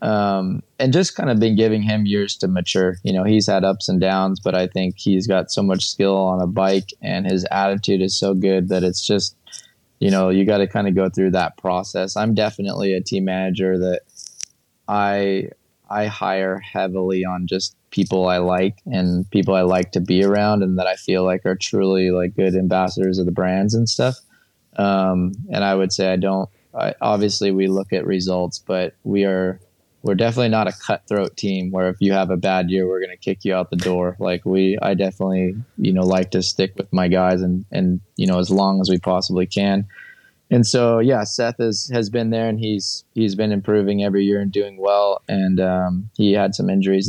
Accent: American